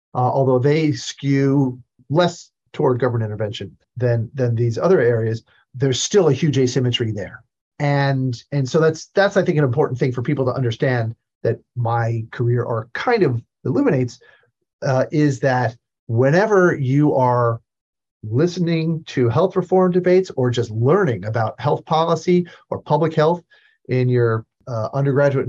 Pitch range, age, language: 120-155 Hz, 40-59, English